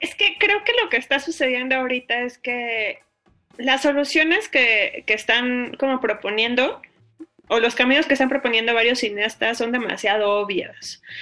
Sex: female